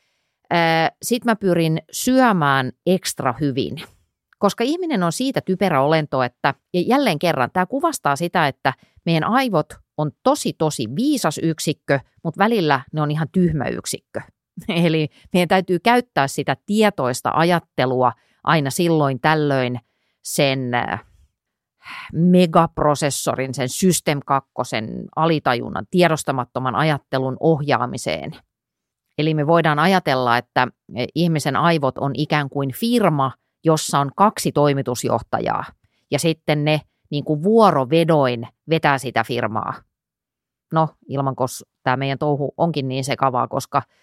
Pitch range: 135-180 Hz